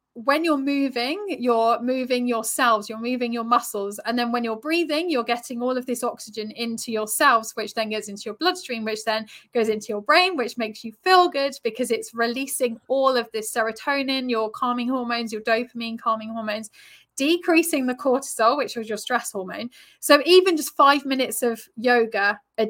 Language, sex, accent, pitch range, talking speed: English, female, British, 225-285 Hz, 190 wpm